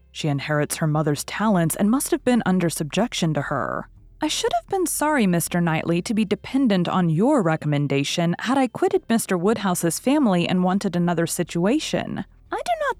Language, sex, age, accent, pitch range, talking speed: English, female, 30-49, American, 160-240 Hz, 180 wpm